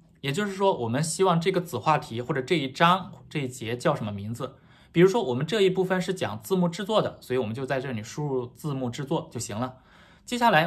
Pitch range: 125-180 Hz